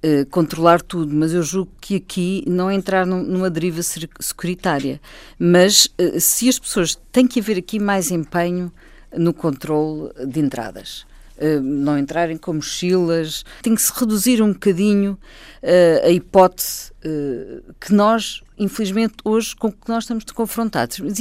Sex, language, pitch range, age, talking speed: female, Portuguese, 160-235 Hz, 50-69, 155 wpm